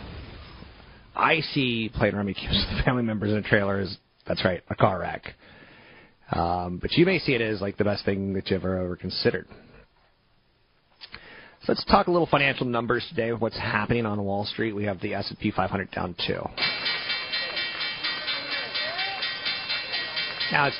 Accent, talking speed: American, 165 wpm